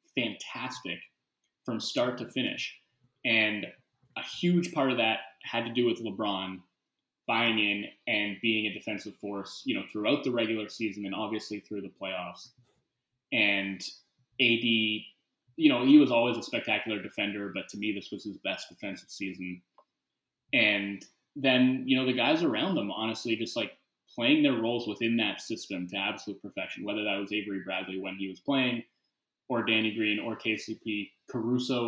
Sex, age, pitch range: male, 20-39, 100-125 Hz